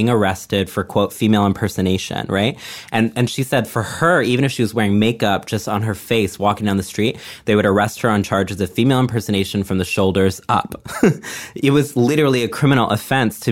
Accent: American